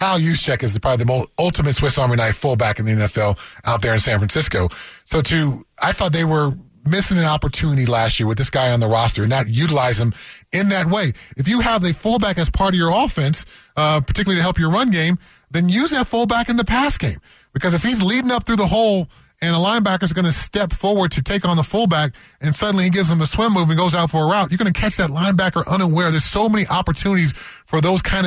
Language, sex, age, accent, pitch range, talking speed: English, male, 30-49, American, 145-195 Hz, 250 wpm